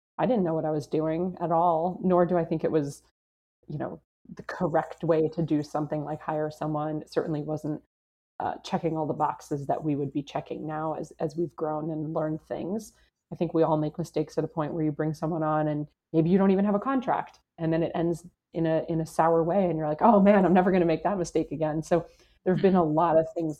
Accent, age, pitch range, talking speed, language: American, 30-49, 155-175 Hz, 250 wpm, English